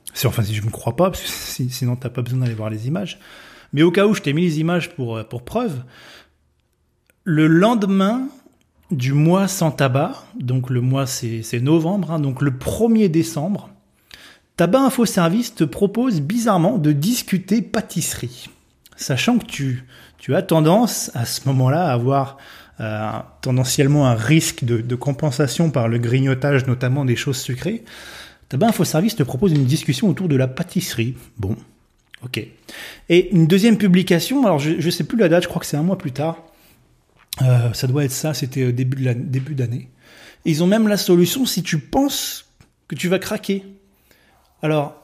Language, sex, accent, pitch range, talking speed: French, male, French, 130-180 Hz, 185 wpm